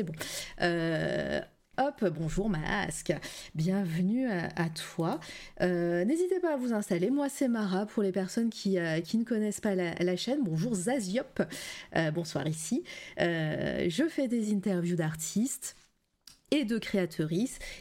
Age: 30-49